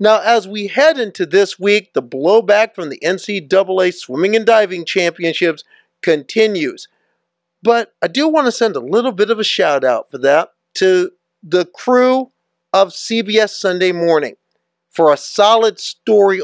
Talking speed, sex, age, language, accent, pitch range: 155 wpm, male, 50-69, English, American, 170-230 Hz